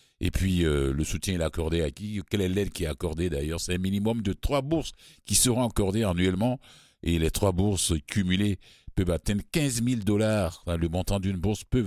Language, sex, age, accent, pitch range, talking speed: French, male, 60-79, French, 75-95 Hz, 205 wpm